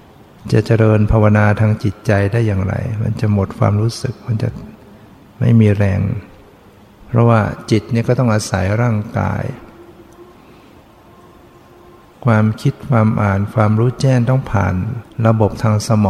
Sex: male